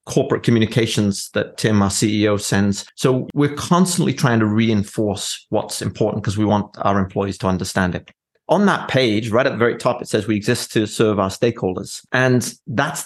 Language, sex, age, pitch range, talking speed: English, male, 30-49, 100-120 Hz, 190 wpm